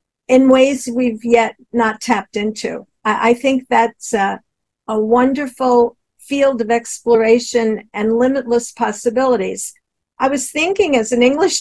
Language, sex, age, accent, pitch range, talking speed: English, female, 50-69, American, 235-275 Hz, 130 wpm